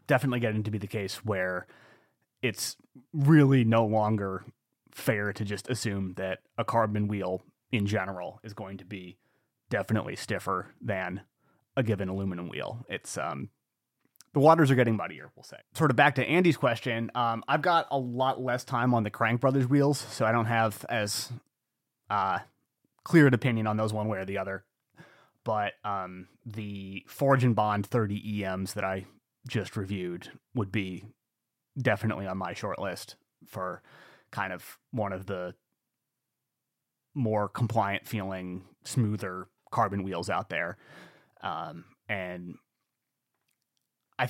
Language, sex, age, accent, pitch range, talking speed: English, male, 30-49, American, 100-130 Hz, 150 wpm